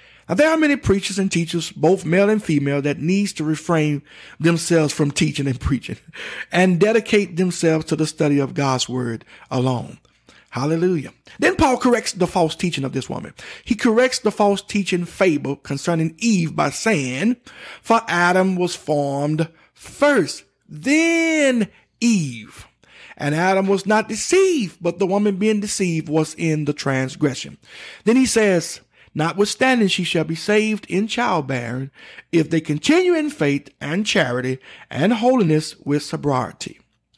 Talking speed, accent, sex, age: 150 wpm, American, male, 50-69